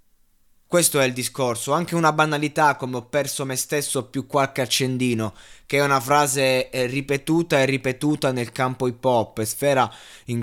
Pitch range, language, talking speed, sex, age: 125-155 Hz, Italian, 160 wpm, male, 20-39